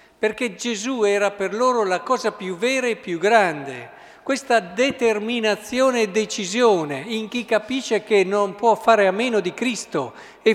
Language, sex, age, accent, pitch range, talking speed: Italian, male, 50-69, native, 155-200 Hz, 160 wpm